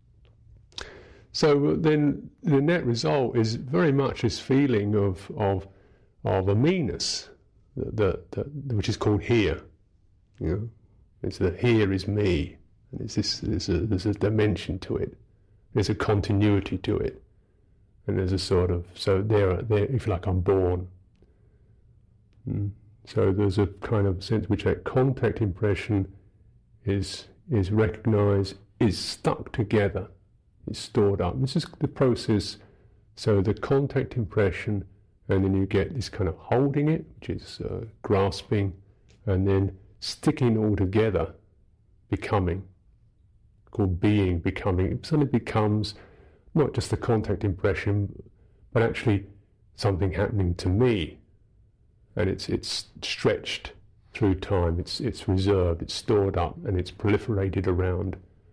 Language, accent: English, British